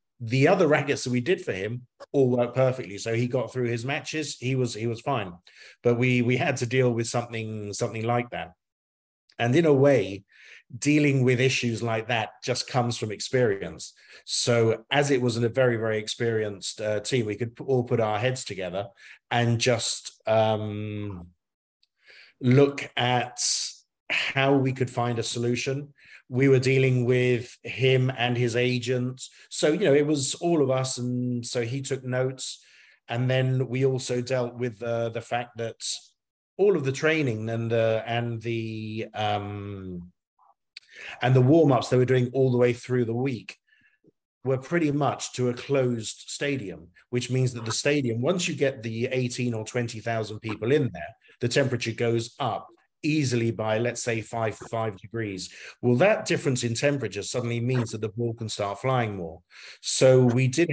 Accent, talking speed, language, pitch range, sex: British, 175 wpm, English, 115-130 Hz, male